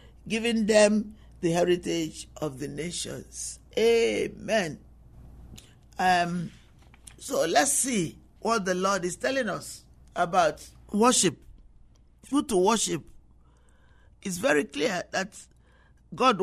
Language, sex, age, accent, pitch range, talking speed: English, male, 50-69, Nigerian, 150-205 Hz, 100 wpm